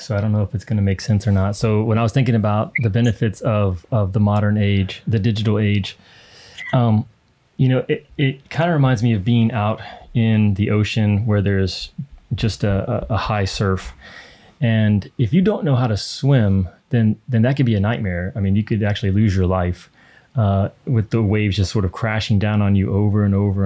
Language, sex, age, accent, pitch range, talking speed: English, male, 30-49, American, 100-120 Hz, 220 wpm